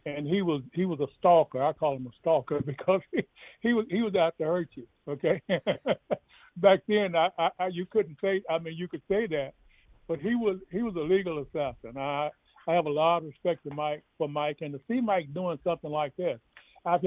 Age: 60-79